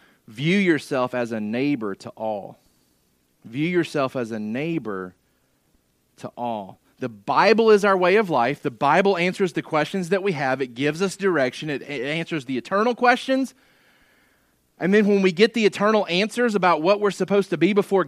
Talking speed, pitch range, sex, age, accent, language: 175 wpm, 130-195 Hz, male, 30-49, American, English